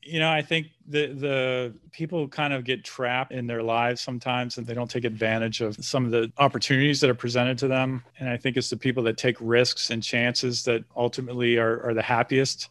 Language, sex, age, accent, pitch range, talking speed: English, male, 40-59, American, 115-130 Hz, 220 wpm